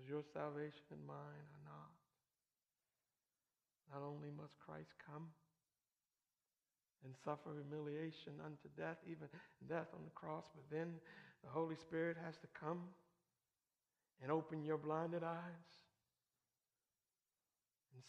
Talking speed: 115 wpm